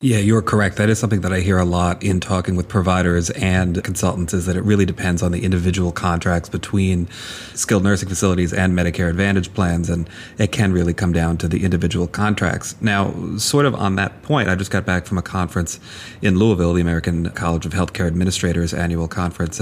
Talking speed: 205 wpm